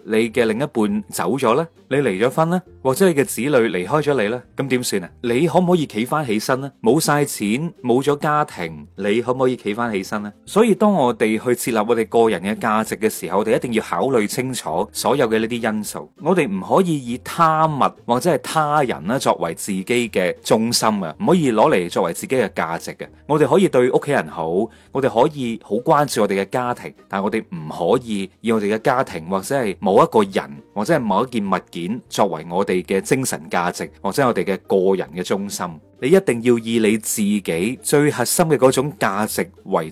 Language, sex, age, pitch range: Chinese, male, 30-49, 105-150 Hz